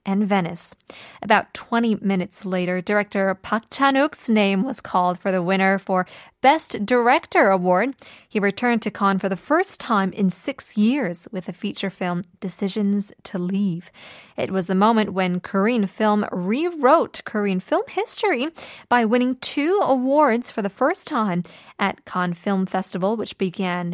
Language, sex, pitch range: Korean, female, 190-235 Hz